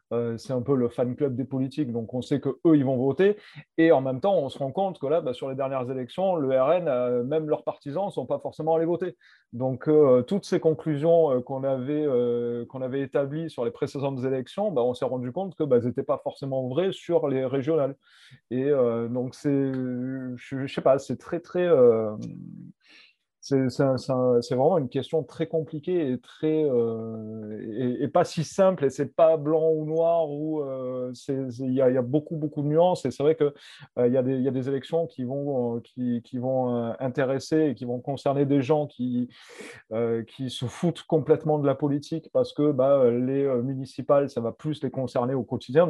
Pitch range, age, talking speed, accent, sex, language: 125-155 Hz, 30-49, 210 wpm, French, male, French